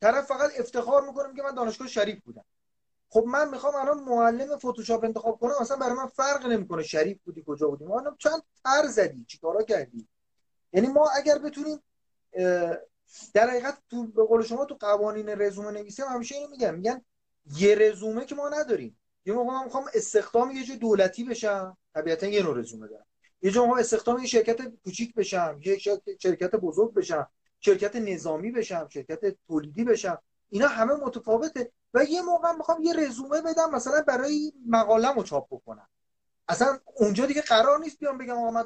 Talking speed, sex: 165 wpm, male